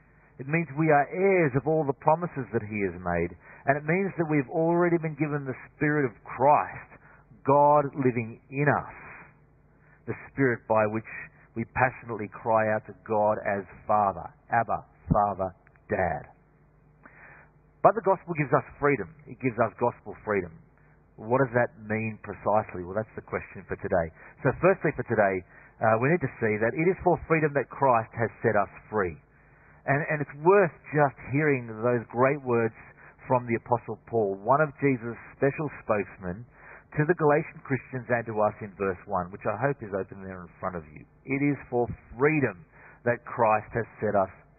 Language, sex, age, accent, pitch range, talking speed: English, male, 40-59, Australian, 110-145 Hz, 180 wpm